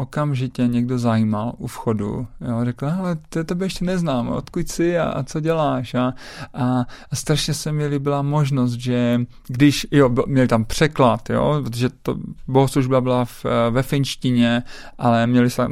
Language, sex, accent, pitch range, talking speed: Czech, male, native, 120-150 Hz, 140 wpm